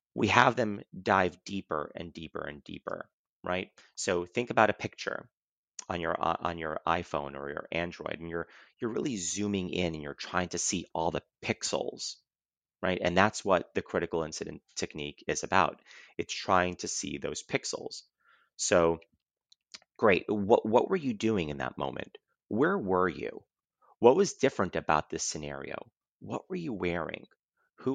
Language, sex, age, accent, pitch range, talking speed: English, male, 30-49, American, 80-100 Hz, 165 wpm